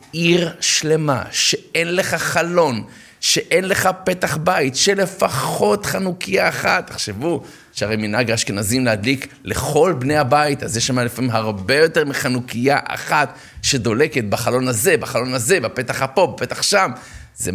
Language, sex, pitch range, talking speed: Hebrew, male, 120-150 Hz, 130 wpm